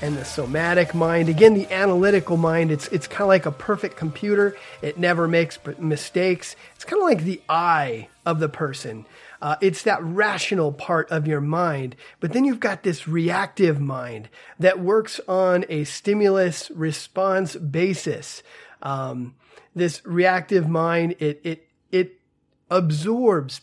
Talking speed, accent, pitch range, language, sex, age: 150 wpm, American, 155-190 Hz, English, male, 30-49